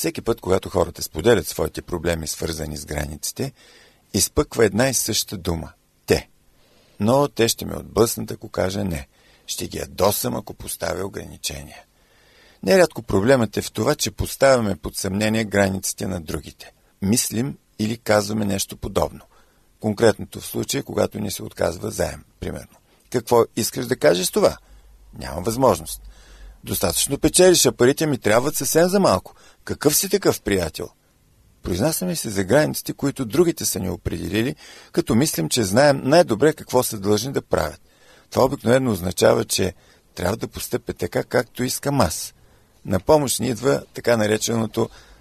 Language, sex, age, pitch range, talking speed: Bulgarian, male, 50-69, 90-130 Hz, 150 wpm